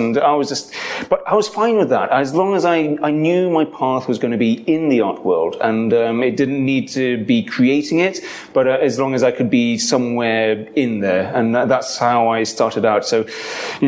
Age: 30-49